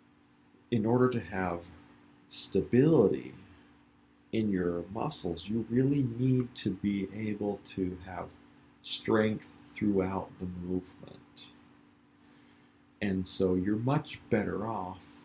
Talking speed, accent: 100 wpm, American